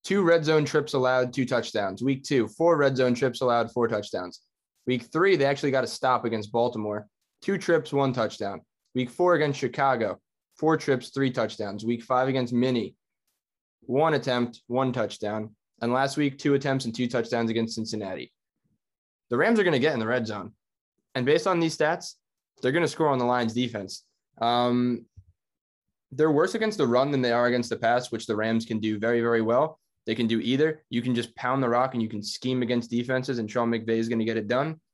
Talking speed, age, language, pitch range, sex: 210 wpm, 20-39, English, 110-135 Hz, male